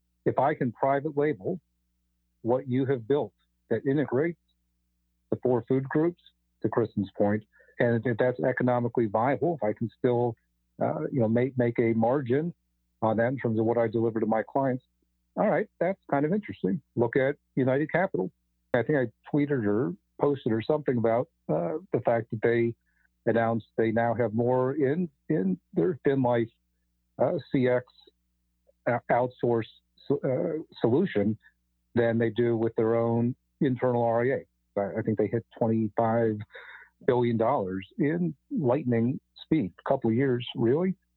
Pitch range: 100-125 Hz